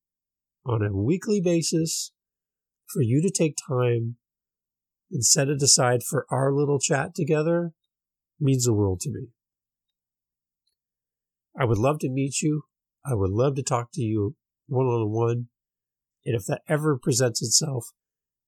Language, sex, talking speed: English, male, 145 wpm